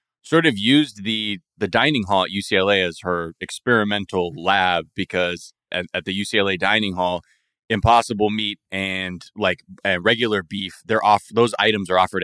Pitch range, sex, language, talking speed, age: 95-115 Hz, male, English, 160 wpm, 20-39